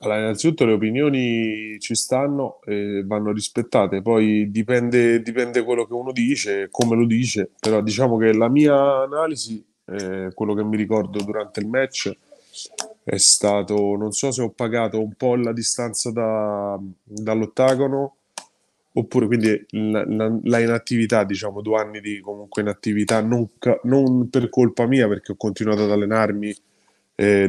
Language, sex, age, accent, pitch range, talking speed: Italian, male, 20-39, native, 105-120 Hz, 155 wpm